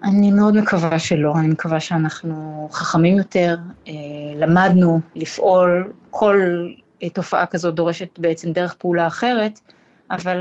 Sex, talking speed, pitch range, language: female, 115 wpm, 185-220 Hz, Hebrew